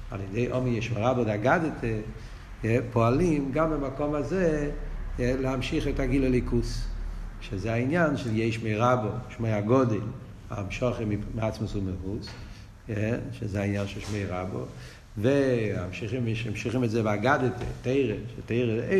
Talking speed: 115 wpm